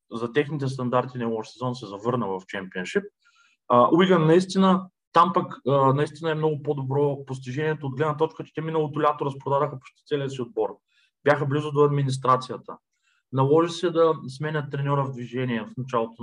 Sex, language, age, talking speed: male, Bulgarian, 20-39, 170 wpm